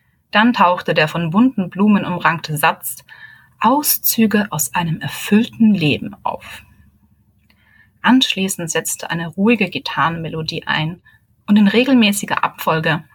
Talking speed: 110 wpm